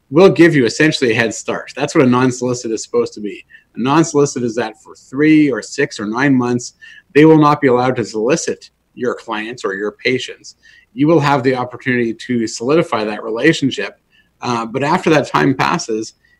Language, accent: English, American